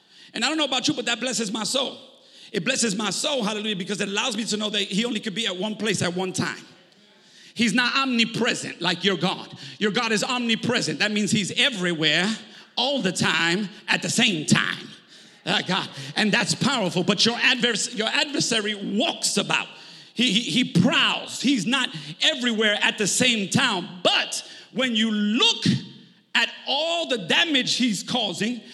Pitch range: 200-260 Hz